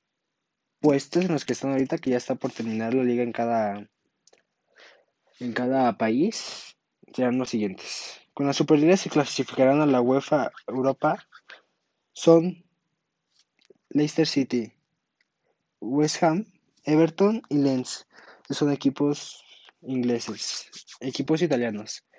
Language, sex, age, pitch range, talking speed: Spanish, male, 20-39, 120-150 Hz, 115 wpm